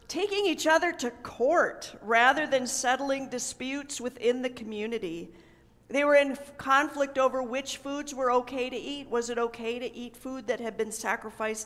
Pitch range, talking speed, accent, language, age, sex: 220-285 Hz, 170 wpm, American, English, 50-69, female